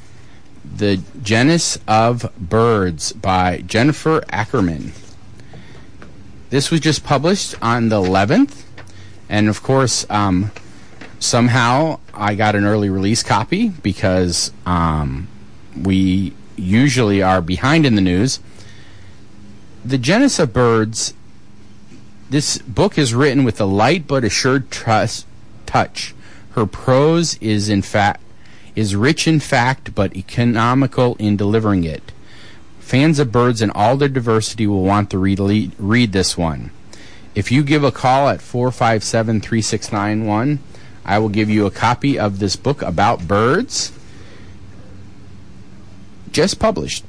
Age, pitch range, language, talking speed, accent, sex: 30-49, 100-130 Hz, English, 120 wpm, American, male